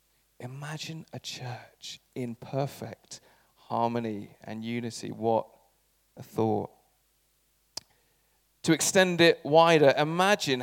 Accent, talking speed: British, 90 wpm